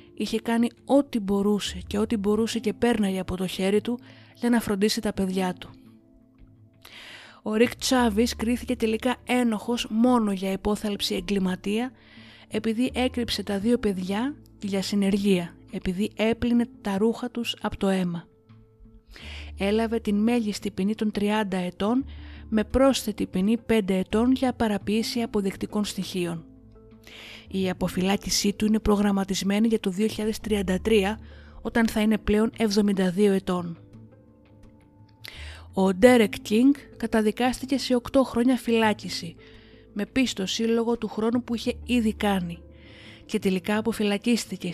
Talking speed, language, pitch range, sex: 125 wpm, Greek, 190-230 Hz, female